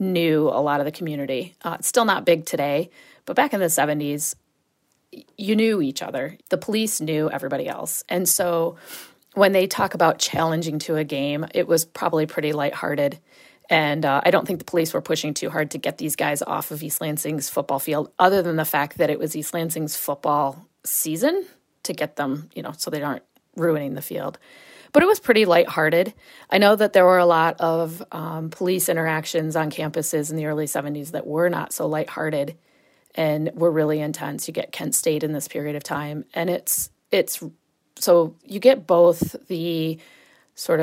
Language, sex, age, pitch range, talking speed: English, female, 30-49, 150-175 Hz, 195 wpm